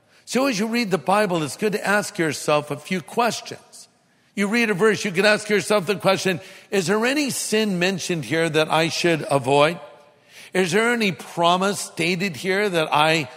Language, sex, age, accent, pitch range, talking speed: English, male, 60-79, American, 155-195 Hz, 190 wpm